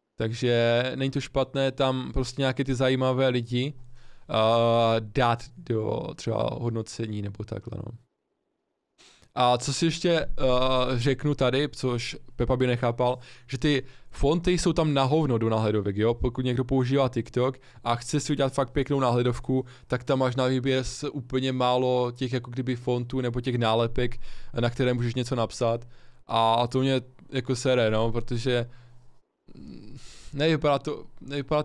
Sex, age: male, 20-39